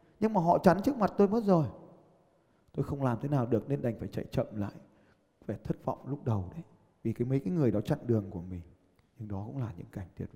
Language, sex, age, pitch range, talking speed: Vietnamese, male, 20-39, 130-190 Hz, 255 wpm